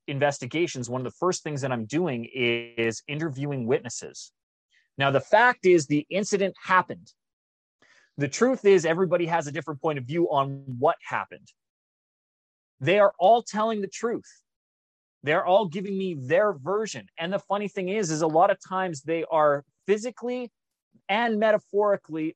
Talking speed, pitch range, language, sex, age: 160 wpm, 145-205 Hz, English, male, 30-49